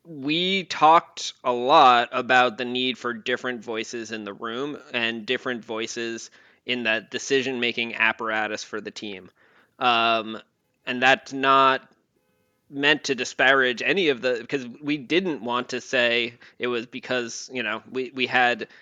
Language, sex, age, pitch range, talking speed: English, male, 20-39, 115-130 Hz, 150 wpm